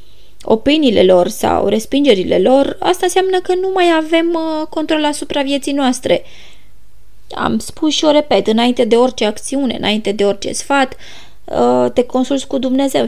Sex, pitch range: female, 185-300 Hz